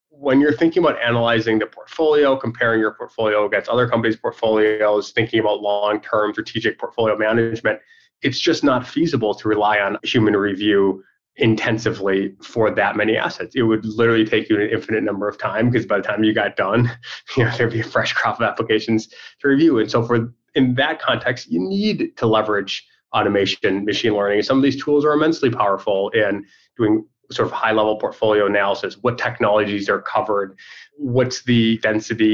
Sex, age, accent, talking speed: male, 20-39, American, 180 wpm